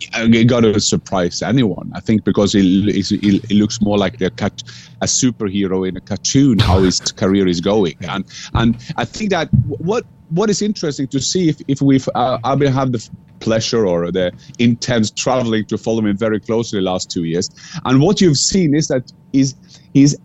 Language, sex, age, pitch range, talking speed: English, male, 30-49, 105-150 Hz, 200 wpm